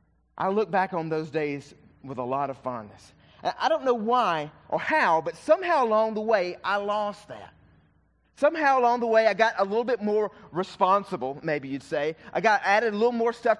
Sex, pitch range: male, 155-220 Hz